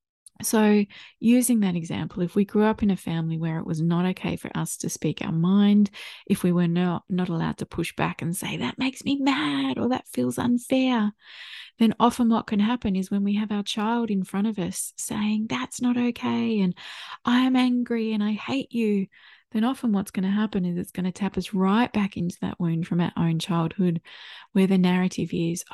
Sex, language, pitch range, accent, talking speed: female, English, 180-225 Hz, Australian, 215 wpm